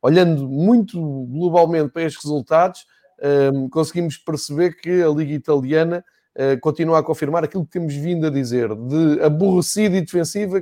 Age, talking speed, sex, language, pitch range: 20-39, 155 wpm, male, Portuguese, 140-170 Hz